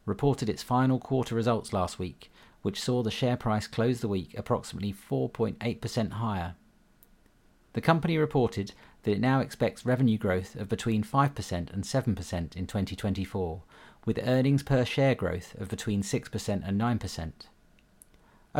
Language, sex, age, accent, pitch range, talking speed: English, male, 40-59, British, 100-120 Hz, 140 wpm